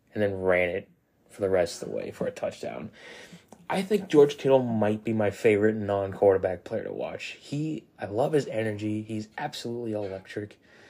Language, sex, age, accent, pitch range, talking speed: English, male, 20-39, American, 100-120 Hz, 180 wpm